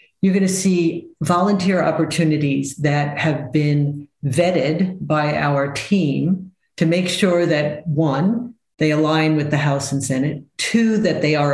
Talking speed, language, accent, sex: 150 wpm, English, American, female